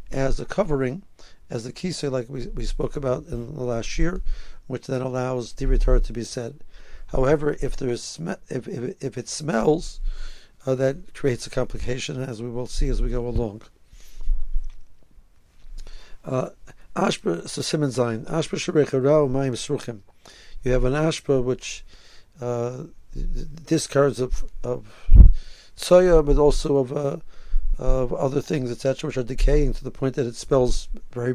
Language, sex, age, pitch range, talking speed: English, male, 60-79, 120-145 Hz, 150 wpm